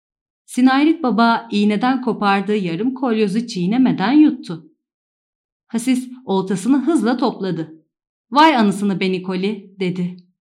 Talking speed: 100 wpm